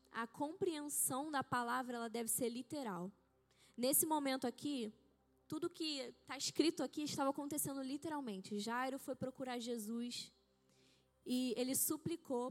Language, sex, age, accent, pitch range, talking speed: Portuguese, female, 10-29, Brazilian, 215-280 Hz, 125 wpm